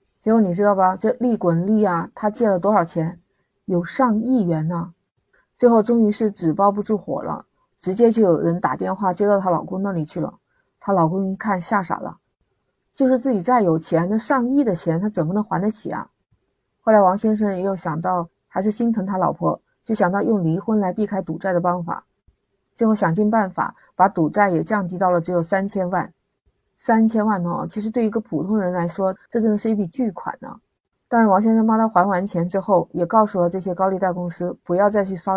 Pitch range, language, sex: 175-215 Hz, Chinese, female